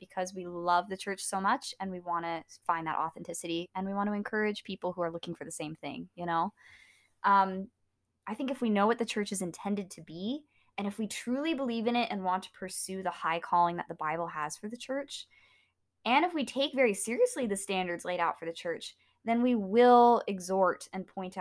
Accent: American